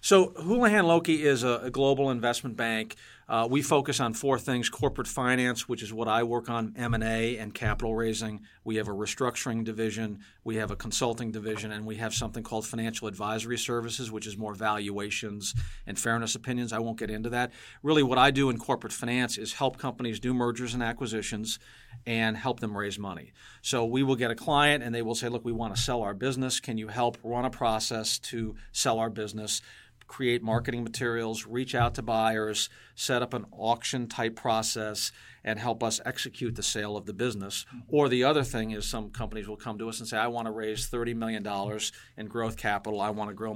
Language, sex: English, male